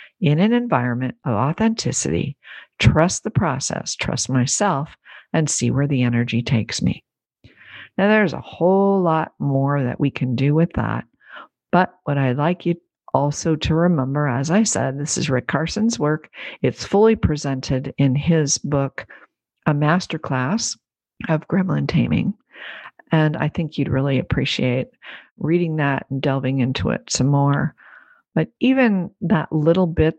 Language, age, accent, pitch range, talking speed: English, 50-69, American, 135-175 Hz, 150 wpm